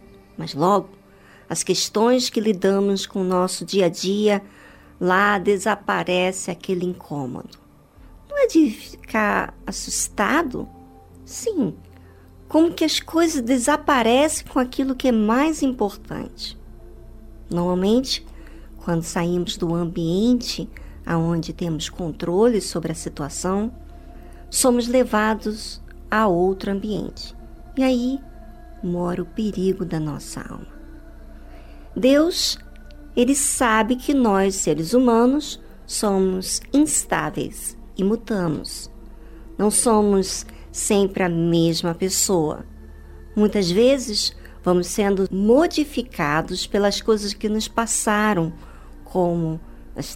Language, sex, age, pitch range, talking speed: Portuguese, male, 50-69, 170-225 Hz, 105 wpm